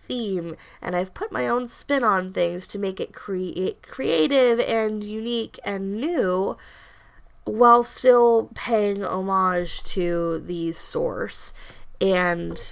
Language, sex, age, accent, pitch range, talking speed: English, female, 10-29, American, 165-205 Hz, 125 wpm